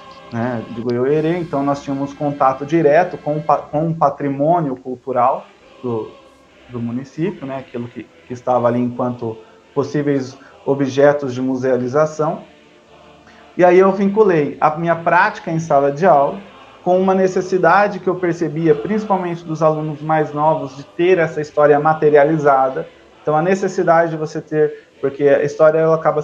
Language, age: Portuguese, 20-39